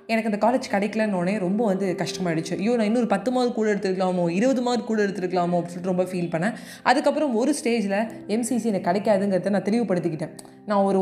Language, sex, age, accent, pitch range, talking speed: Tamil, female, 20-39, native, 190-240 Hz, 185 wpm